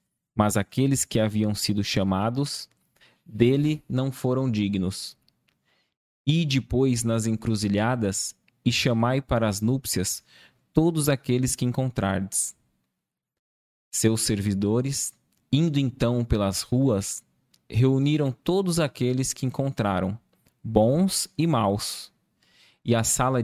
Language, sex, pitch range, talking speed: Portuguese, male, 105-135 Hz, 100 wpm